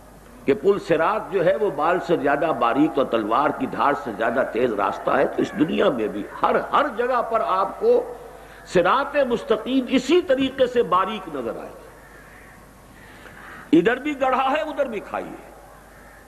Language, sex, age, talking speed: Urdu, male, 60-79, 165 wpm